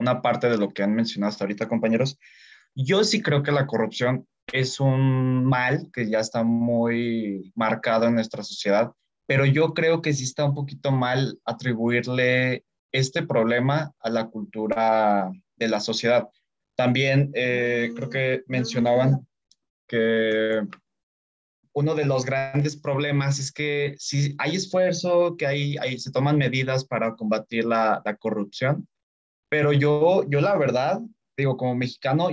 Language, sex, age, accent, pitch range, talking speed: Spanish, male, 20-39, Mexican, 115-140 Hz, 145 wpm